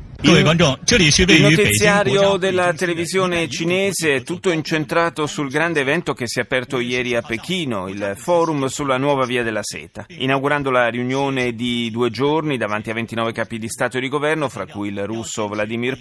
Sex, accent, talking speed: male, native, 170 wpm